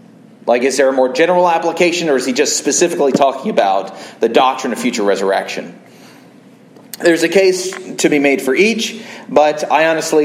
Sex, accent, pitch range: male, American, 135-175 Hz